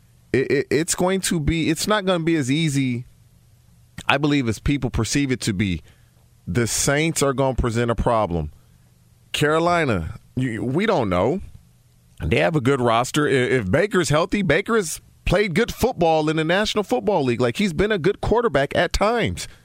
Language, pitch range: English, 120-180 Hz